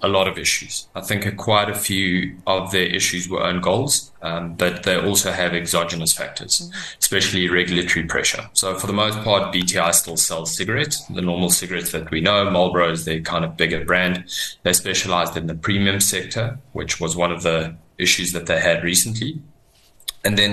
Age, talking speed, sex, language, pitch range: 20-39, 190 wpm, male, English, 85-100 Hz